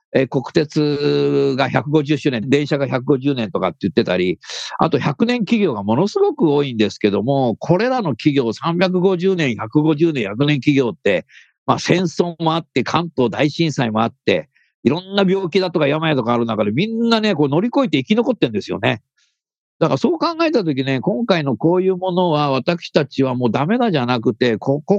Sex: male